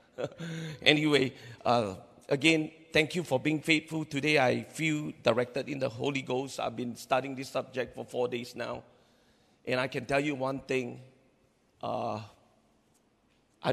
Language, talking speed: English, 150 wpm